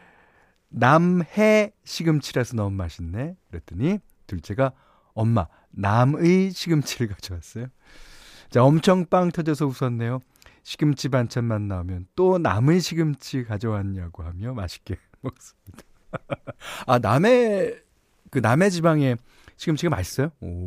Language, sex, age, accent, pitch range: Korean, male, 40-59, native, 100-165 Hz